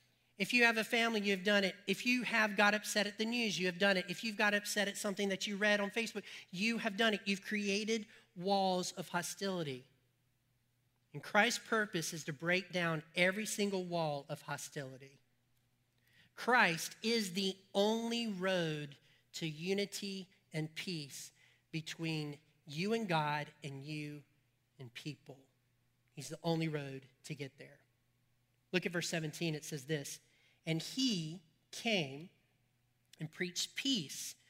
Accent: American